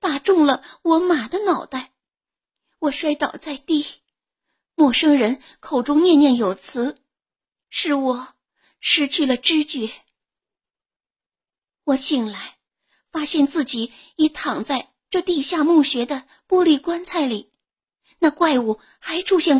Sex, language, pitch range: female, Chinese, 255-320 Hz